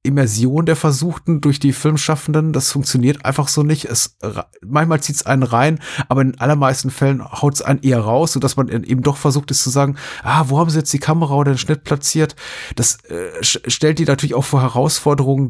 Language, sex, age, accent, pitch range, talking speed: German, male, 30-49, German, 120-140 Hz, 200 wpm